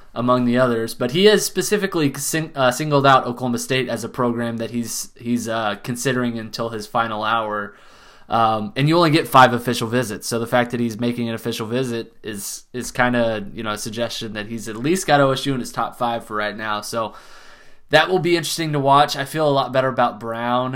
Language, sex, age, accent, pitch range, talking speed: English, male, 20-39, American, 115-135 Hz, 225 wpm